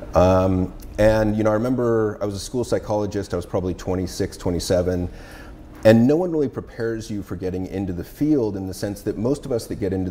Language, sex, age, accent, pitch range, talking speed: English, male, 30-49, American, 90-110 Hz, 220 wpm